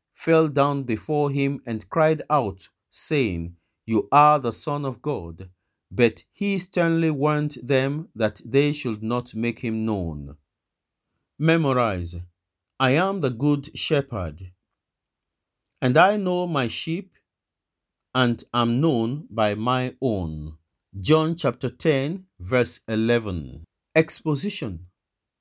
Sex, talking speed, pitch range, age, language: male, 115 wpm, 105-150 Hz, 50-69, English